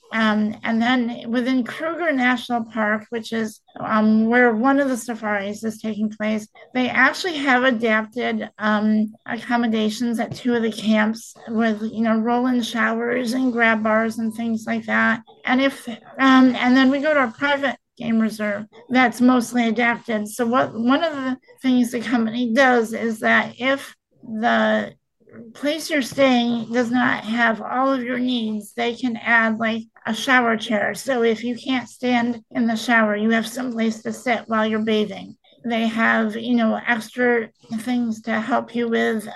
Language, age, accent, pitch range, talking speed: English, 50-69, American, 220-250 Hz, 170 wpm